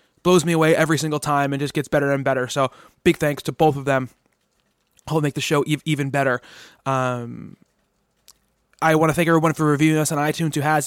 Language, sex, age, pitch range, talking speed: English, male, 20-39, 140-160 Hz, 220 wpm